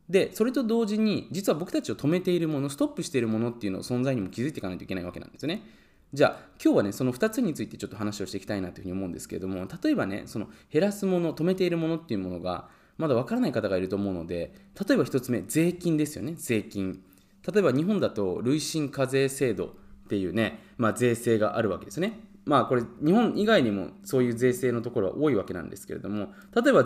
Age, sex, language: 20-39, male, Japanese